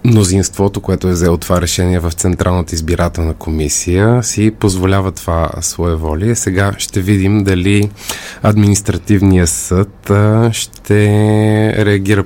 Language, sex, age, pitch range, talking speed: Bulgarian, male, 20-39, 95-115 Hz, 115 wpm